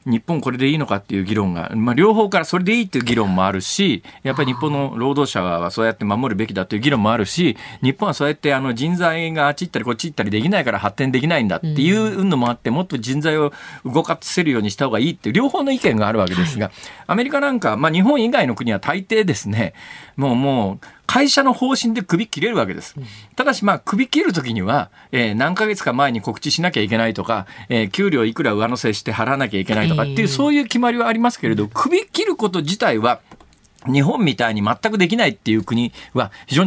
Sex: male